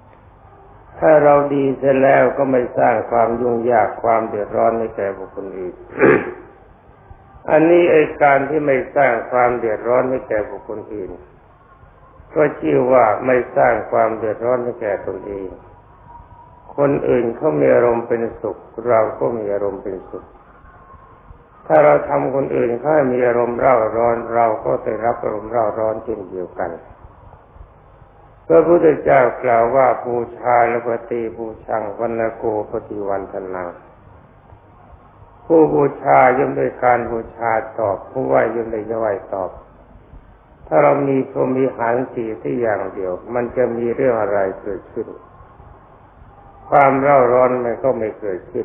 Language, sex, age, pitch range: Thai, male, 60-79, 110-130 Hz